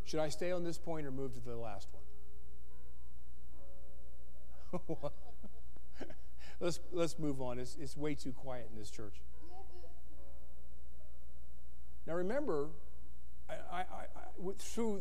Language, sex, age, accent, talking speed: English, male, 50-69, American, 110 wpm